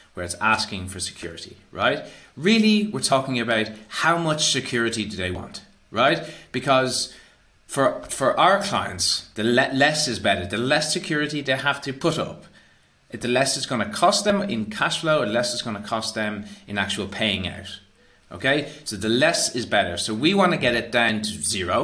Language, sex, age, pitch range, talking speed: English, male, 30-49, 100-145 Hz, 185 wpm